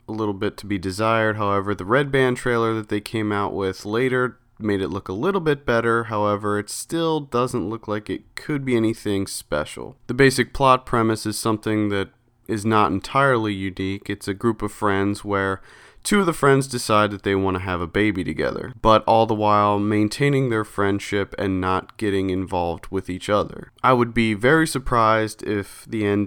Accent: American